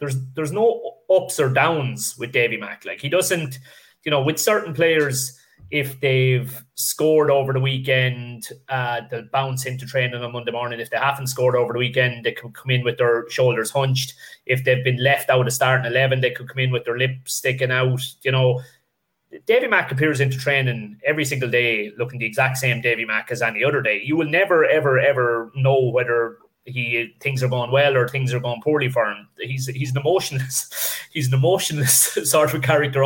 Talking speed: 205 wpm